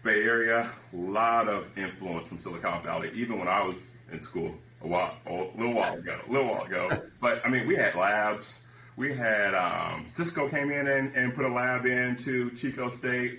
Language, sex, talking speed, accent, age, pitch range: English, male, 205 wpm, American, 30-49, 105-130 Hz